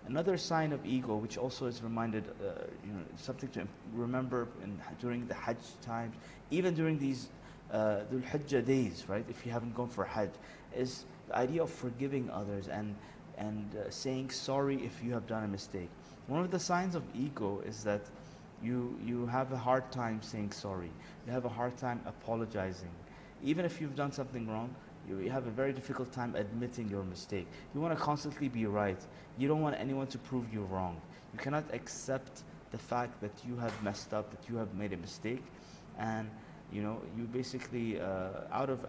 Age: 30-49